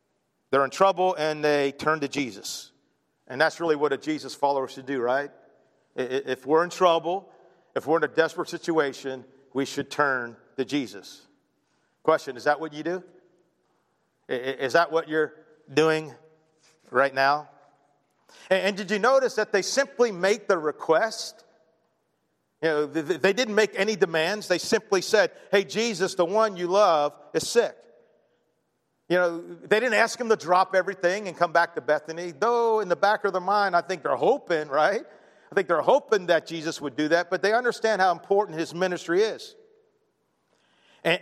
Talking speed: 170 wpm